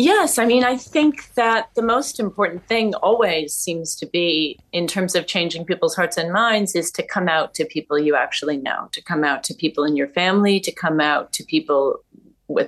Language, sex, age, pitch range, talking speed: English, female, 30-49, 165-235 Hz, 215 wpm